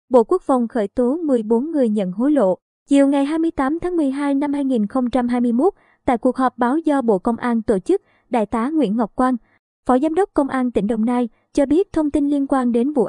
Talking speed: 220 wpm